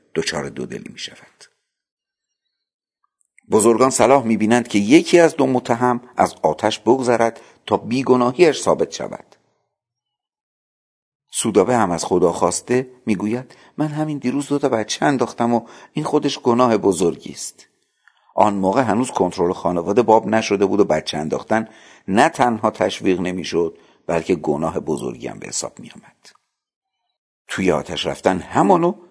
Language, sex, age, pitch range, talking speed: Persian, male, 50-69, 90-125 Hz, 145 wpm